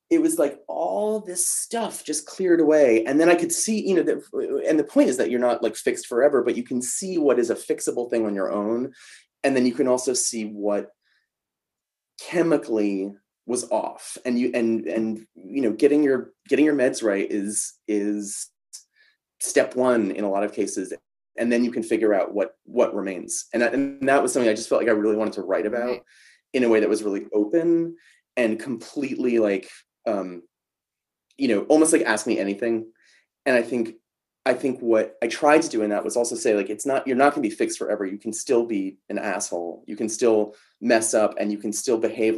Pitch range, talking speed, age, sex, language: 105-155 Hz, 215 wpm, 30-49, male, English